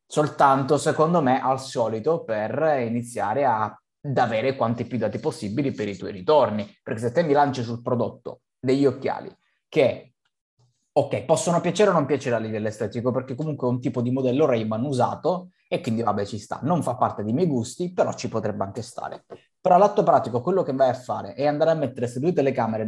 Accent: native